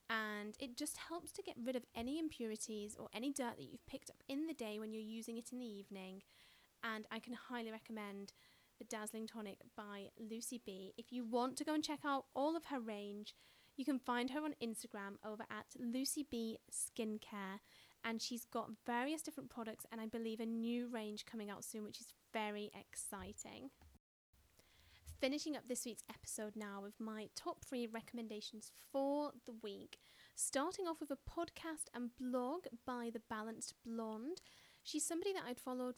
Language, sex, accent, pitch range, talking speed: English, female, British, 220-270 Hz, 185 wpm